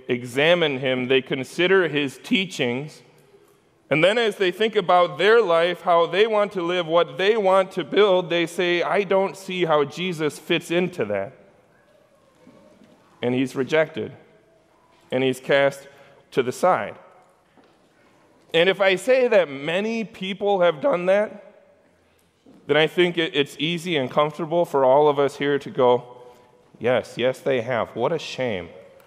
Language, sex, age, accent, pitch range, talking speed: English, male, 30-49, American, 140-185 Hz, 155 wpm